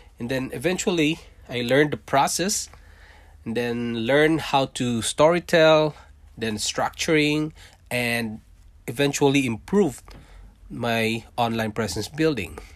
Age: 20-39